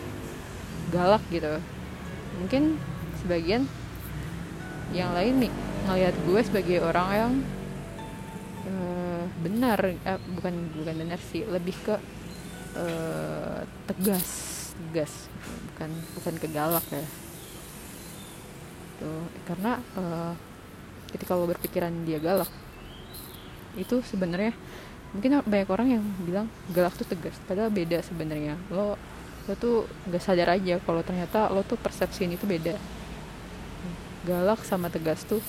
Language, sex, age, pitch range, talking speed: Indonesian, female, 20-39, 170-195 Hz, 115 wpm